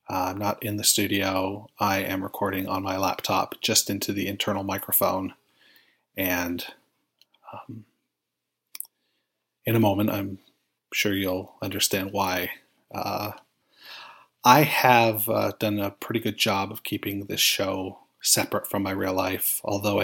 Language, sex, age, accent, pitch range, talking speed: English, male, 30-49, American, 95-105 Hz, 140 wpm